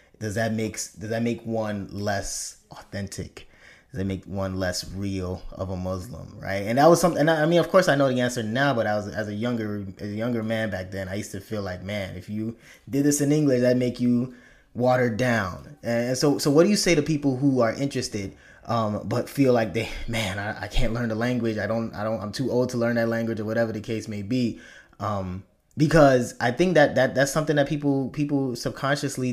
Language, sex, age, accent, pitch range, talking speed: English, male, 20-39, American, 110-145 Hz, 235 wpm